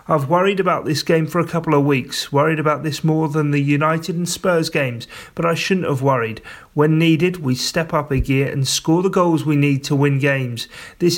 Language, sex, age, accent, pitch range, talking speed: English, male, 30-49, British, 130-160 Hz, 225 wpm